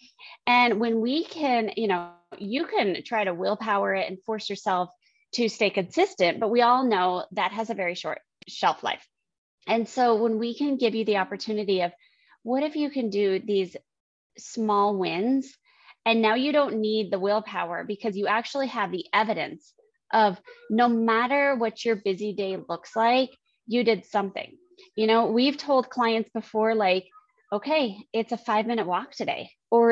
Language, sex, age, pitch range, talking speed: English, female, 20-39, 205-250 Hz, 175 wpm